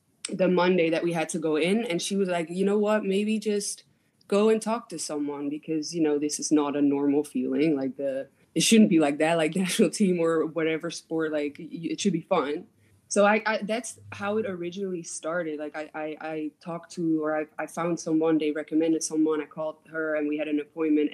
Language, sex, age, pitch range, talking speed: English, female, 20-39, 155-185 Hz, 225 wpm